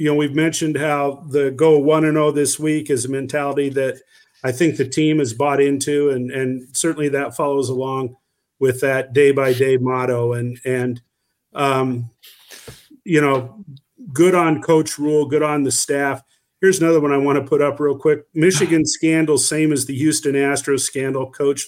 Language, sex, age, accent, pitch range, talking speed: English, male, 50-69, American, 130-155 Hz, 185 wpm